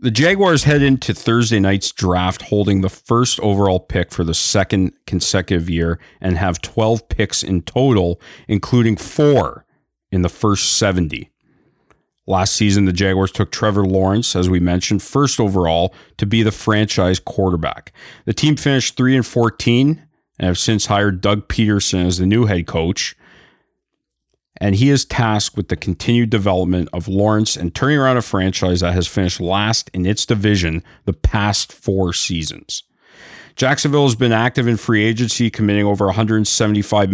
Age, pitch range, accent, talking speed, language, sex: 40-59, 90-115 Hz, American, 160 wpm, English, male